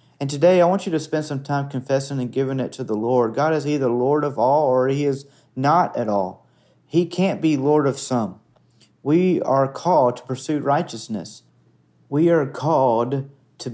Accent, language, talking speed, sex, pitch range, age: American, English, 190 wpm, male, 120-145 Hz, 40-59